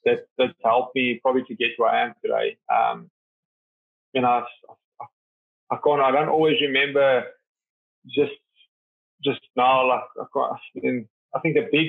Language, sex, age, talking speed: English, male, 20-39, 150 wpm